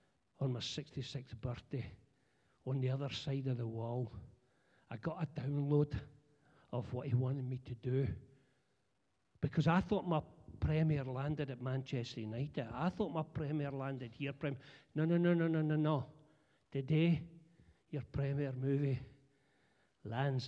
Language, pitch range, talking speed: English, 130-180 Hz, 145 wpm